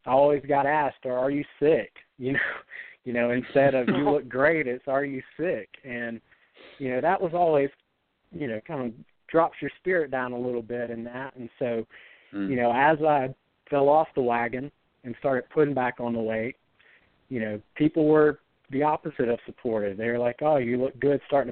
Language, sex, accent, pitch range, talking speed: English, male, American, 115-135 Hz, 200 wpm